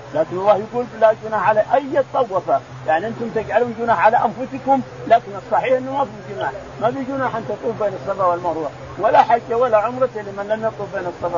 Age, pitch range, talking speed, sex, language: 50-69, 185-230 Hz, 190 wpm, male, Arabic